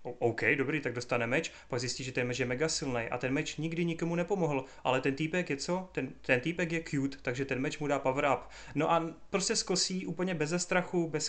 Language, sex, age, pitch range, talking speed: Czech, male, 30-49, 135-160 Hz, 230 wpm